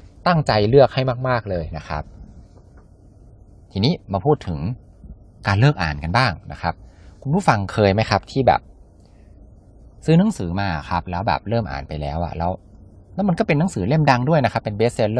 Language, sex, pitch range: Thai, male, 85-120 Hz